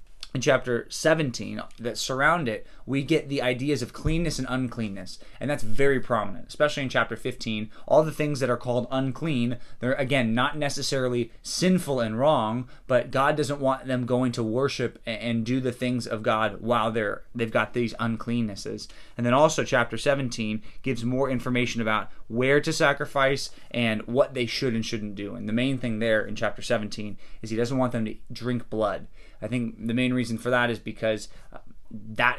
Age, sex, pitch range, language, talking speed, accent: 20-39, male, 115-135 Hz, English, 185 wpm, American